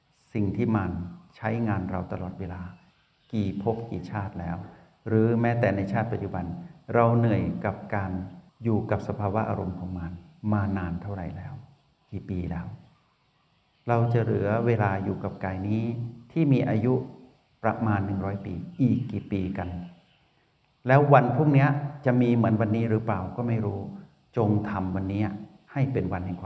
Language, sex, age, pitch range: Thai, male, 60-79, 95-115 Hz